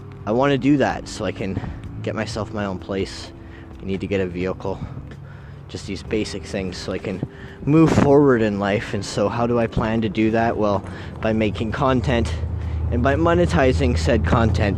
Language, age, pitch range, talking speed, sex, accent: English, 20-39, 95-120 Hz, 195 wpm, male, American